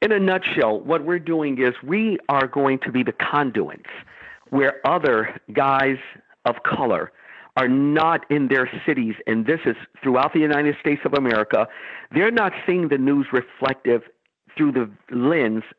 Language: English